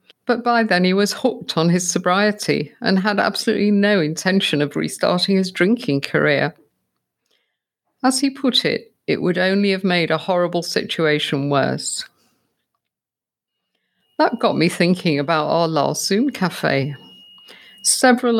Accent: British